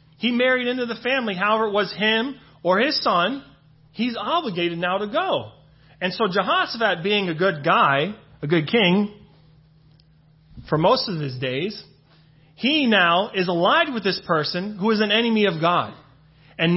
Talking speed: 165 wpm